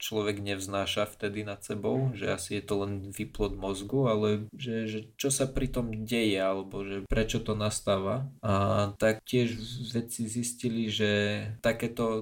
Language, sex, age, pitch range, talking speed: Slovak, male, 20-39, 100-115 Hz, 155 wpm